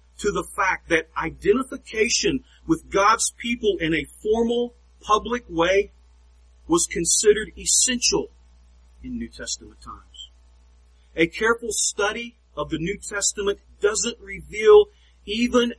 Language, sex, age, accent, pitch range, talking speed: English, male, 40-59, American, 190-240 Hz, 115 wpm